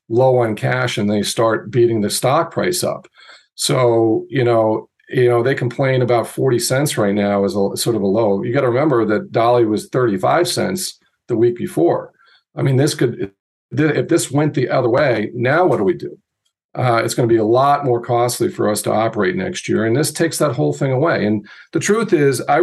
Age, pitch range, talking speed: 40-59, 110-130 Hz, 215 wpm